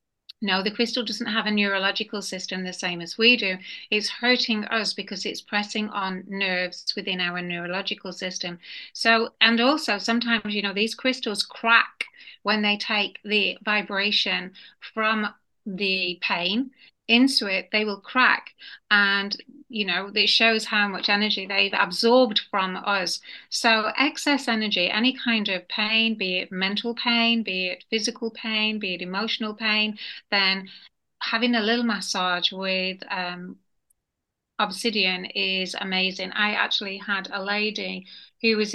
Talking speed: 145 wpm